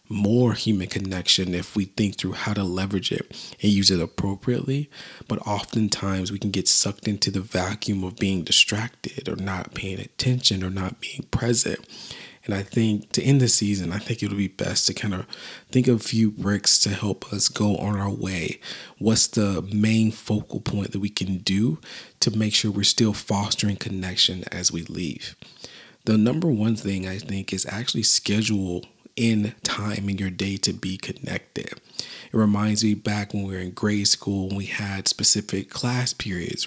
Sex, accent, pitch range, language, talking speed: male, American, 100-110 Hz, English, 185 wpm